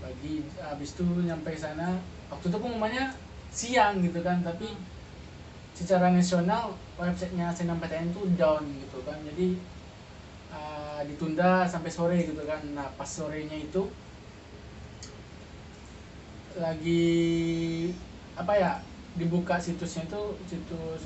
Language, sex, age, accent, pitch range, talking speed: Indonesian, male, 20-39, native, 155-185 Hz, 115 wpm